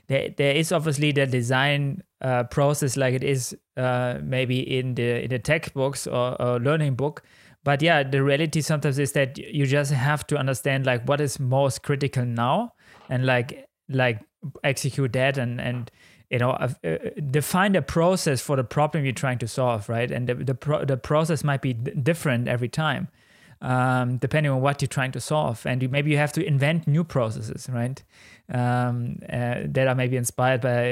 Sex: male